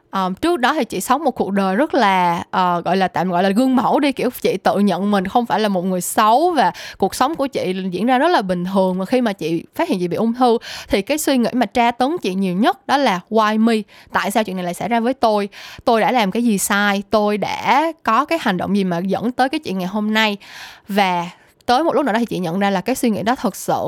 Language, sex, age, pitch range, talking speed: Vietnamese, female, 10-29, 190-250 Hz, 280 wpm